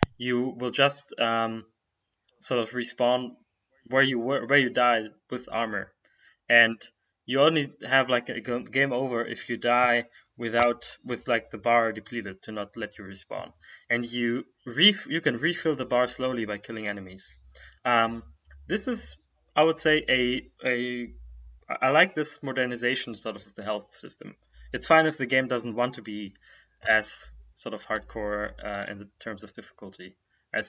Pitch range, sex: 105-125 Hz, male